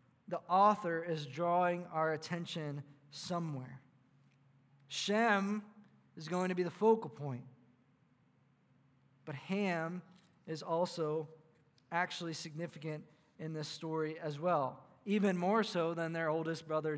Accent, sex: American, male